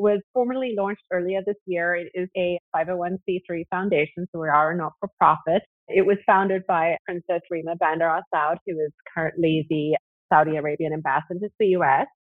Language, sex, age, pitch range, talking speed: English, female, 30-49, 165-205 Hz, 160 wpm